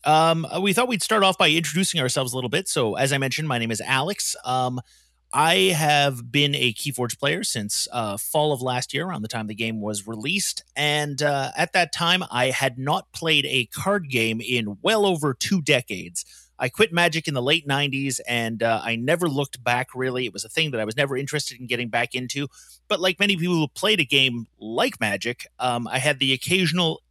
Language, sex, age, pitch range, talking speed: English, male, 30-49, 120-155 Hz, 220 wpm